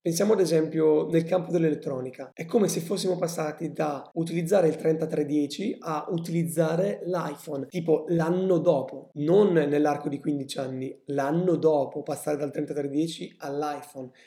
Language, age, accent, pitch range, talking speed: Italian, 20-39, native, 145-170 Hz, 135 wpm